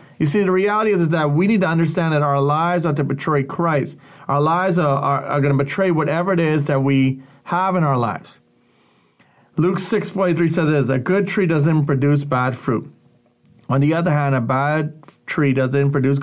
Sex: male